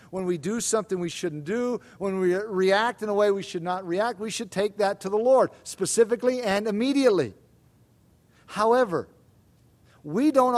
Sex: male